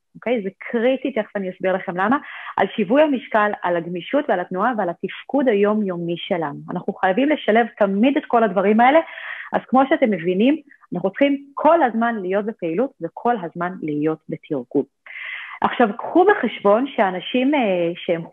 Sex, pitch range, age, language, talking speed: female, 185-245 Hz, 30-49, English, 145 wpm